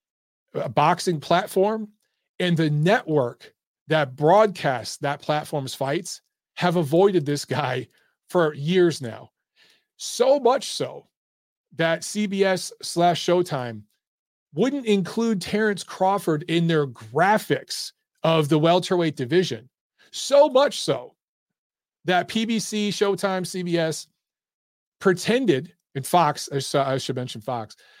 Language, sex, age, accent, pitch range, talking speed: English, male, 40-59, American, 145-195 Hz, 105 wpm